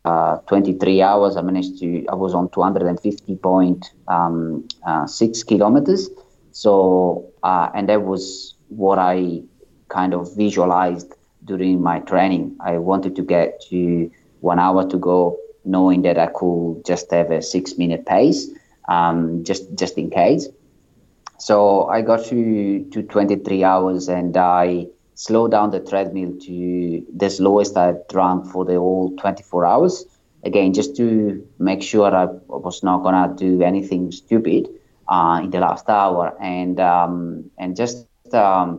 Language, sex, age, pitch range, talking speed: English, male, 30-49, 90-100 Hz, 150 wpm